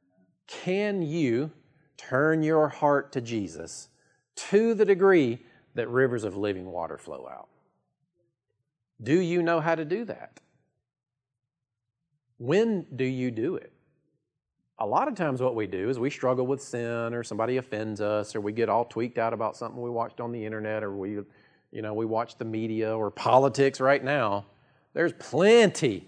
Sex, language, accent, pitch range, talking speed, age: male, English, American, 115-150 Hz, 165 wpm, 40-59